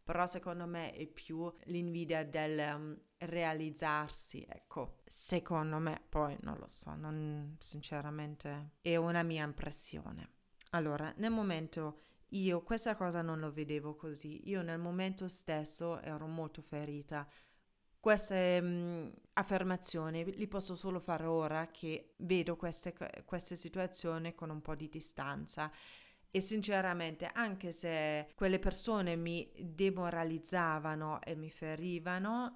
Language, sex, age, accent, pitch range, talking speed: Italian, female, 30-49, native, 155-185 Hz, 125 wpm